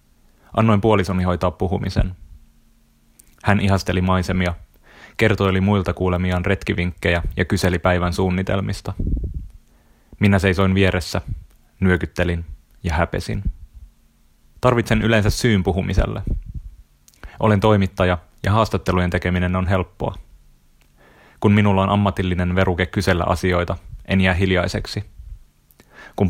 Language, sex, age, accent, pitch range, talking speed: Finnish, male, 30-49, native, 85-100 Hz, 100 wpm